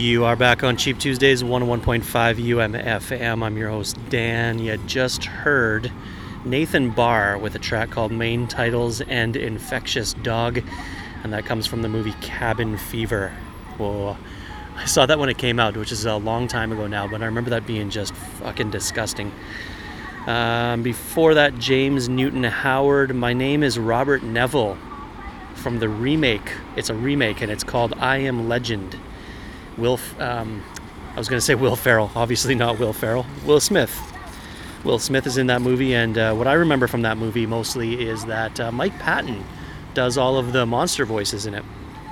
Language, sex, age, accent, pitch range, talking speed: English, male, 30-49, American, 110-130 Hz, 175 wpm